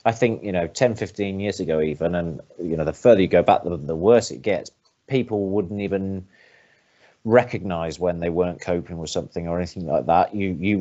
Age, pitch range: 30-49, 90-105 Hz